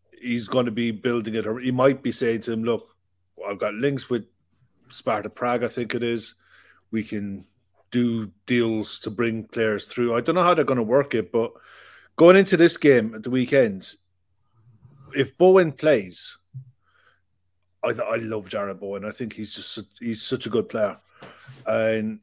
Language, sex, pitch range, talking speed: English, male, 105-130 Hz, 185 wpm